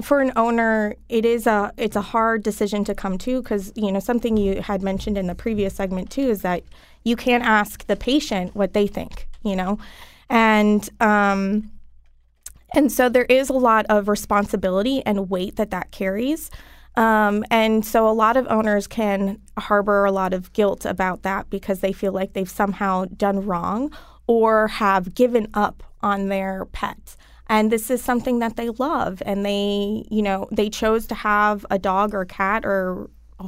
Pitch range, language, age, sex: 195-230 Hz, English, 20-39, female